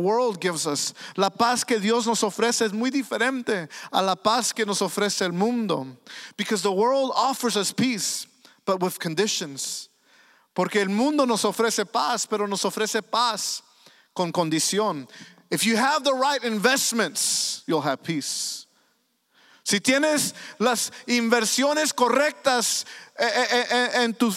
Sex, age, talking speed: male, 50-69, 140 wpm